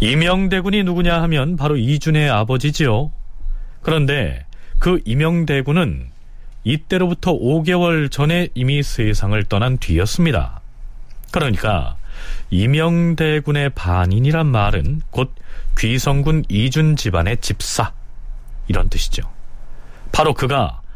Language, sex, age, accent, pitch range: Korean, male, 40-59, native, 95-160 Hz